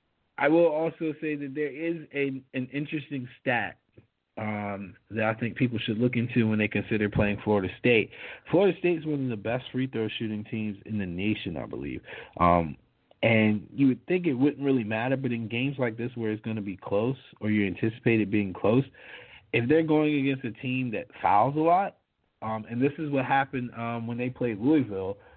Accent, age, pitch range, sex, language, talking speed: American, 40-59, 105-135 Hz, male, English, 205 wpm